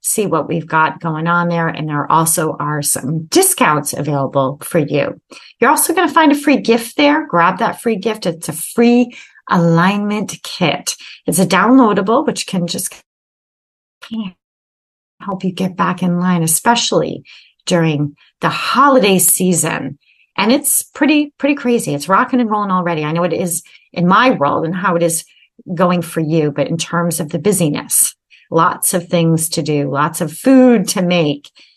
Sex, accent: female, American